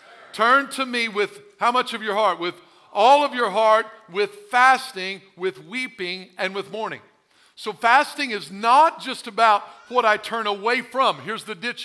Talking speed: 175 wpm